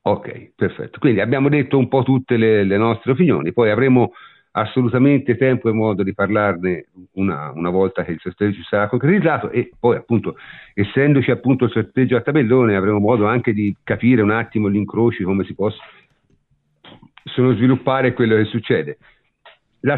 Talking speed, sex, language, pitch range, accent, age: 165 wpm, male, Italian, 100-125 Hz, native, 50-69